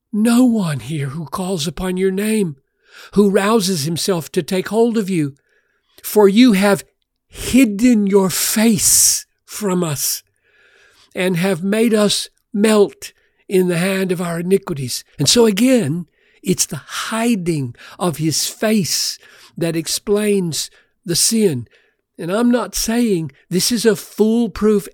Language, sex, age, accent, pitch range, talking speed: English, male, 60-79, American, 175-220 Hz, 135 wpm